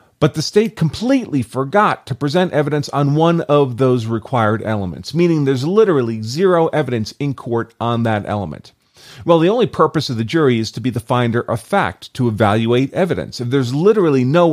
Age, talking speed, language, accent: 40-59, 185 wpm, English, American